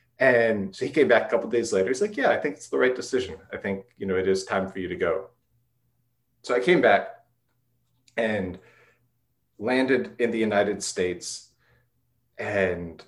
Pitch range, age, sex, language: 105-145 Hz, 30-49, male, English